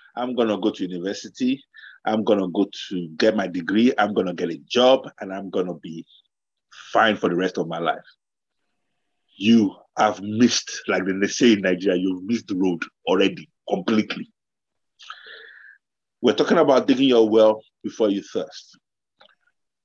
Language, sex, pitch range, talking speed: English, male, 105-155 Hz, 165 wpm